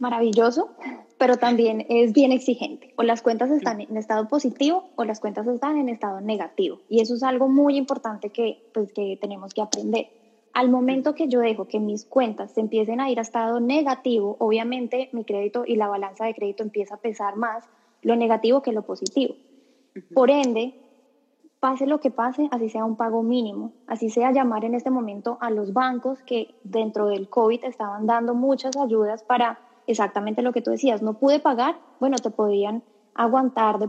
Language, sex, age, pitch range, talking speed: Spanish, female, 10-29, 220-260 Hz, 190 wpm